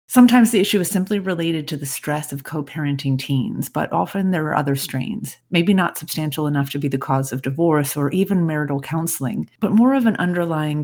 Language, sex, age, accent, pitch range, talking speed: English, female, 30-49, American, 140-185 Hz, 205 wpm